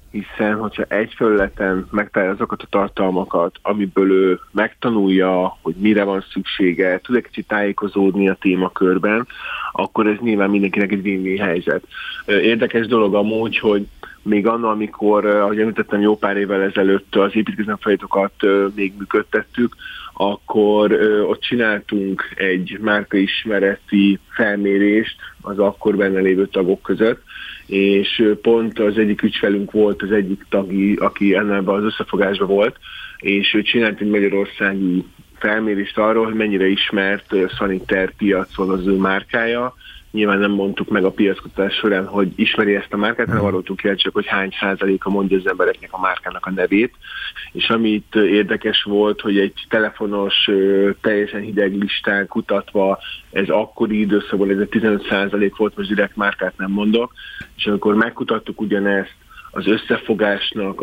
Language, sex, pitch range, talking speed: Hungarian, male, 100-105 Hz, 135 wpm